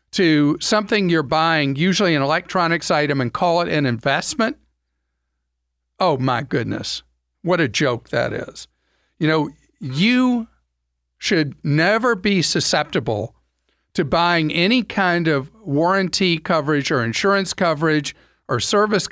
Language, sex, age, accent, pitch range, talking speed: English, male, 50-69, American, 140-185 Hz, 125 wpm